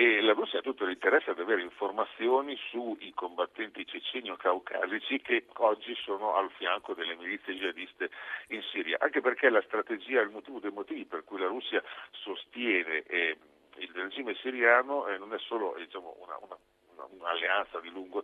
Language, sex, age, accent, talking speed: Italian, male, 50-69, native, 160 wpm